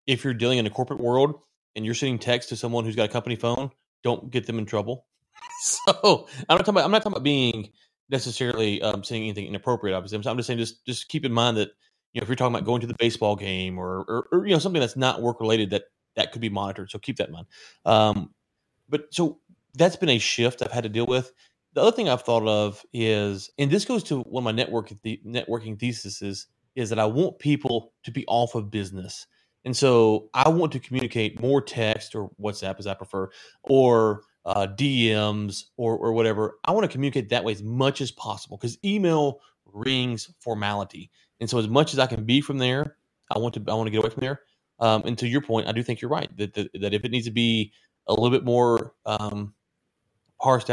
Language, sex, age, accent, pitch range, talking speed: English, male, 30-49, American, 110-130 Hz, 230 wpm